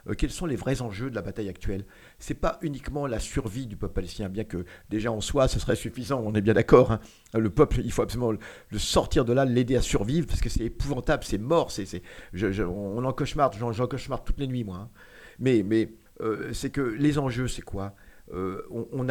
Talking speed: 230 wpm